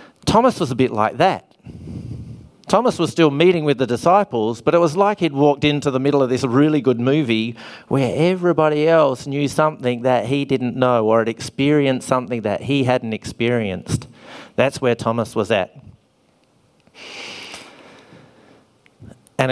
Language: English